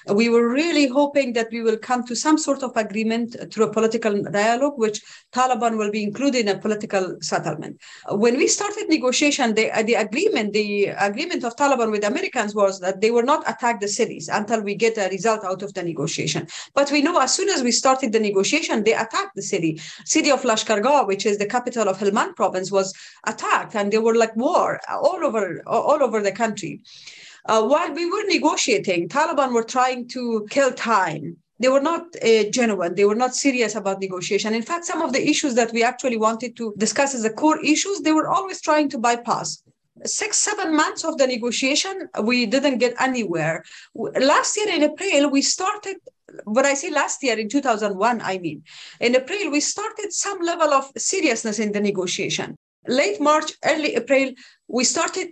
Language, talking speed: English, 195 wpm